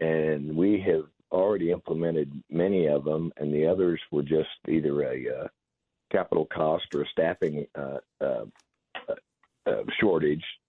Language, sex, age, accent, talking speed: English, male, 50-69, American, 145 wpm